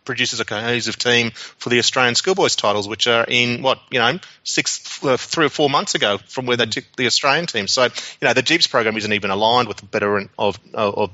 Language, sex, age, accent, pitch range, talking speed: English, male, 30-49, Australian, 110-130 Hz, 225 wpm